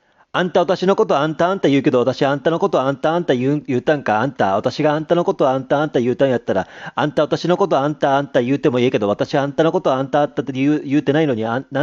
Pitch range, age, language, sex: 130-175 Hz, 40-59, Japanese, male